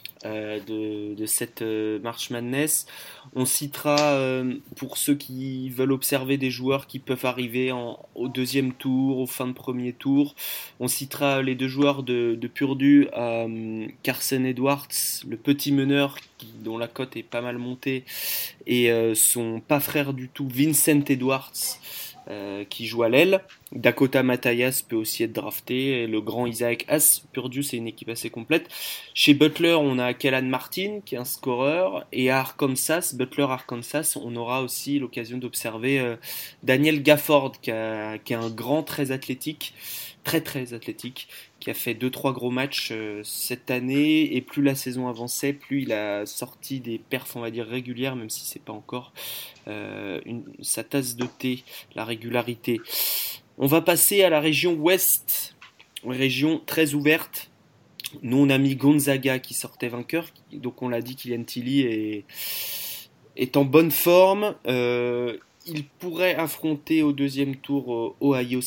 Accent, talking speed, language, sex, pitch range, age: French, 165 wpm, French, male, 120-140 Hz, 20-39